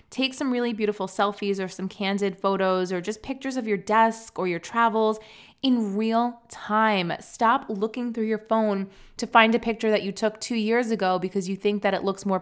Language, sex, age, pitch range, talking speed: English, female, 20-39, 190-225 Hz, 210 wpm